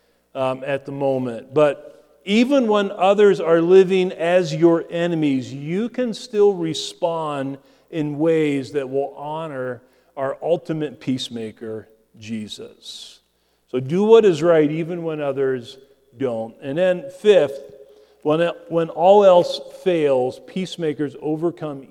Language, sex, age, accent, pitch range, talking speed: English, male, 40-59, American, 135-195 Hz, 125 wpm